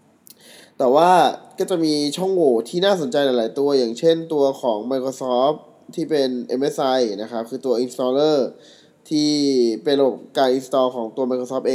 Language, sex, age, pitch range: Thai, male, 20-39, 125-150 Hz